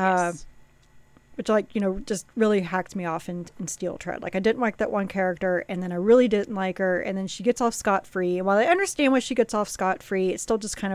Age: 40-59